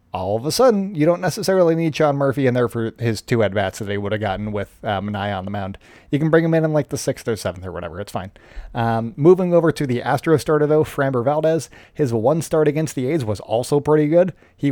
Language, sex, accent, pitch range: English, male, American, 120-155 Hz